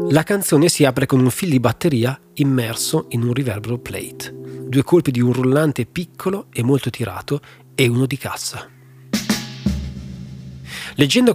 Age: 30-49